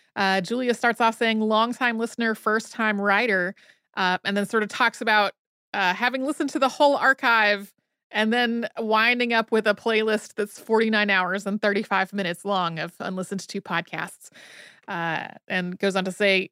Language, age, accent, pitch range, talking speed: English, 30-49, American, 195-245 Hz, 175 wpm